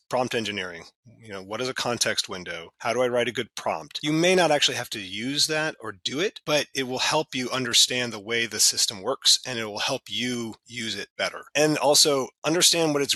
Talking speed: 235 wpm